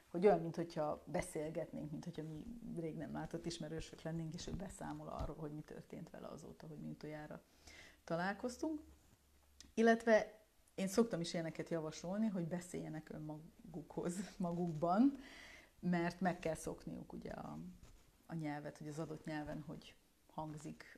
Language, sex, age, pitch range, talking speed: Hungarian, female, 30-49, 155-180 Hz, 140 wpm